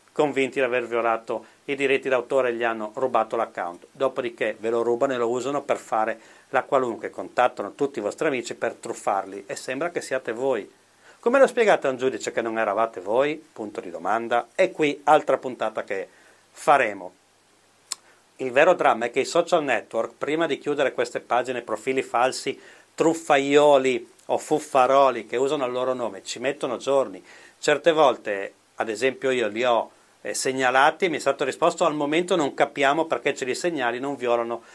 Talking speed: 180 wpm